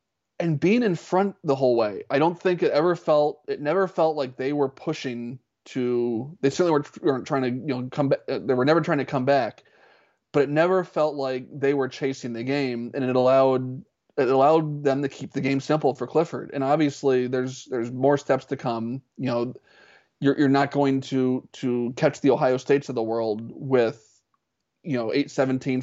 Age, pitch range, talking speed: 20-39, 125-145 Hz, 205 wpm